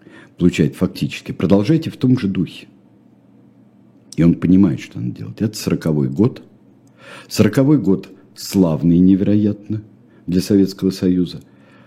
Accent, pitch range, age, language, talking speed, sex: native, 80-125 Hz, 60-79, Russian, 115 wpm, male